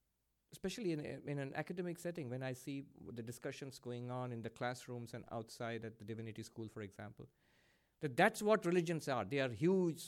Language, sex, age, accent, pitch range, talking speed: English, male, 50-69, Indian, 125-175 Hz, 200 wpm